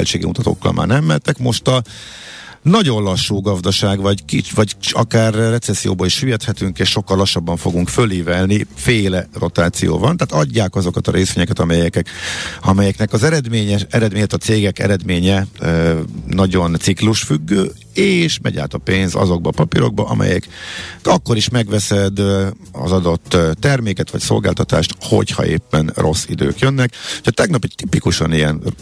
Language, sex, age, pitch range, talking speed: Hungarian, male, 50-69, 90-115 Hz, 135 wpm